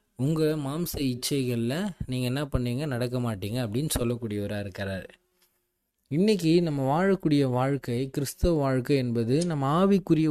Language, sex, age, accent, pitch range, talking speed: Tamil, male, 20-39, native, 125-155 Hz, 115 wpm